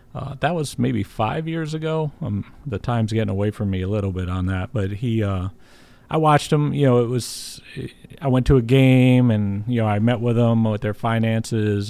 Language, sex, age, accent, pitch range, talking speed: English, male, 40-59, American, 100-120 Hz, 220 wpm